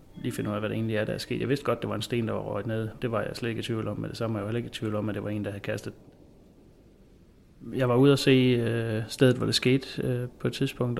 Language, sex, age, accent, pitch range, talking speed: Danish, male, 30-49, native, 110-125 Hz, 345 wpm